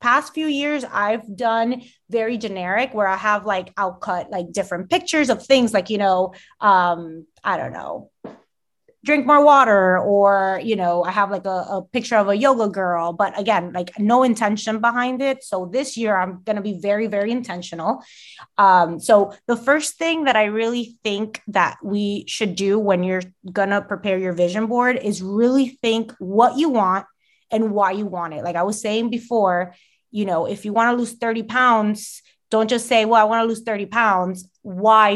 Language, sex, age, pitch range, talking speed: English, female, 20-39, 185-230 Hz, 195 wpm